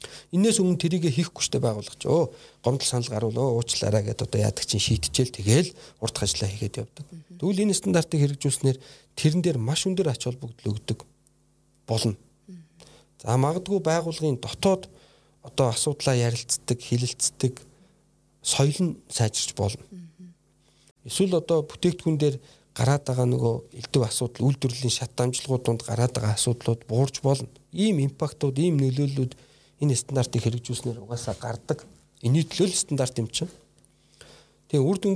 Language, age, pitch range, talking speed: Russian, 50-69, 115-155 Hz, 90 wpm